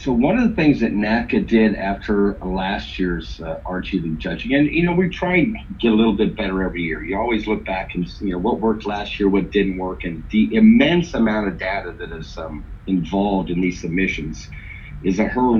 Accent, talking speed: American, 225 wpm